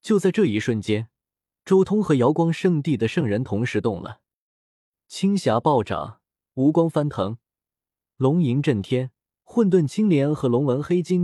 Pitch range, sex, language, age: 110-165 Hz, male, Chinese, 20-39